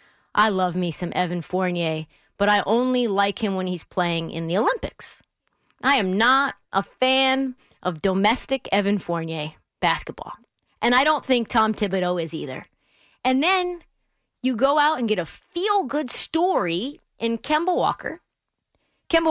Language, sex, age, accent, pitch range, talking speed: English, female, 30-49, American, 180-270 Hz, 150 wpm